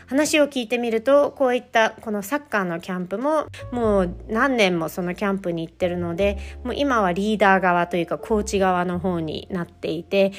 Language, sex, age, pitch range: Japanese, female, 40-59, 175-230 Hz